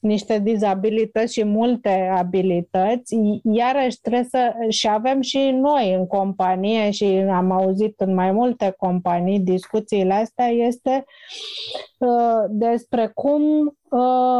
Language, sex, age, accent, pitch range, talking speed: Romanian, female, 30-49, native, 205-245 Hz, 120 wpm